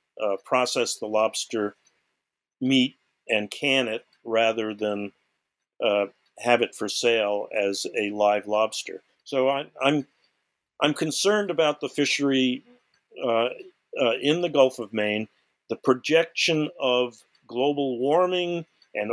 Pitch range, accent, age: 105-140 Hz, American, 50-69